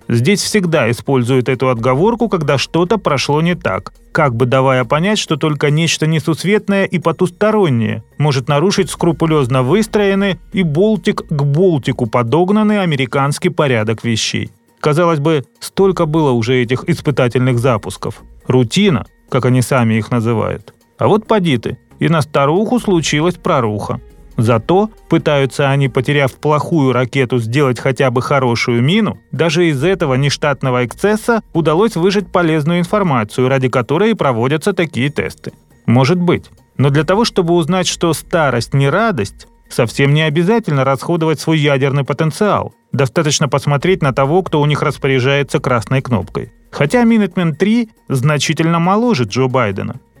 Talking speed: 135 wpm